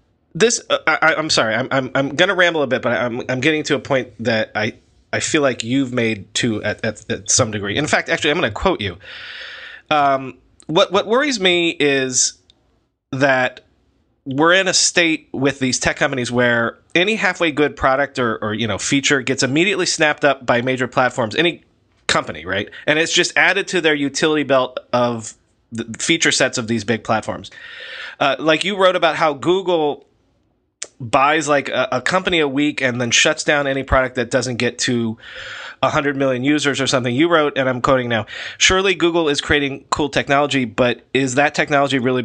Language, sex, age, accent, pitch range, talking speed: English, male, 30-49, American, 120-160 Hz, 195 wpm